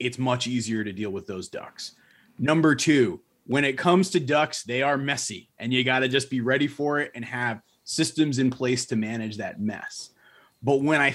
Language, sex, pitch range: English, male, 120-145 Hz